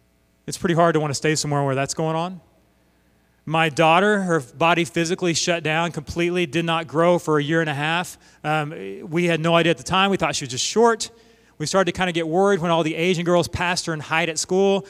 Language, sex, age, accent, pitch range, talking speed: English, male, 30-49, American, 140-185 Hz, 245 wpm